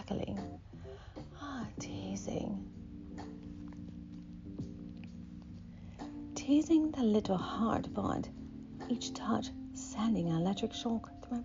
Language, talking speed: English, 80 wpm